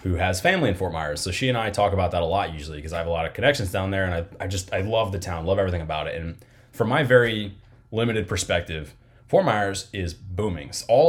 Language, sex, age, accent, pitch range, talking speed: English, male, 20-39, American, 95-120 Hz, 260 wpm